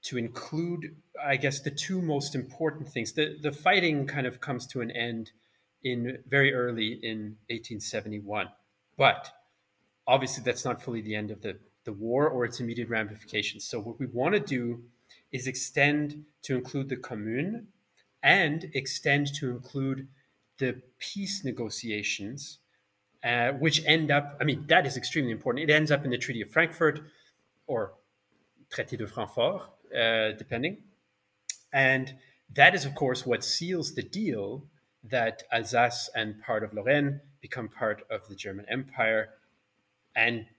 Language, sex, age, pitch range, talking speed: English, male, 30-49, 115-140 Hz, 150 wpm